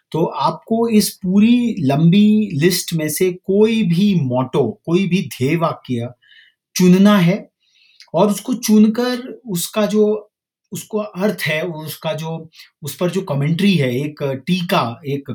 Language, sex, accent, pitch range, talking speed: English, male, Indian, 145-205 Hz, 140 wpm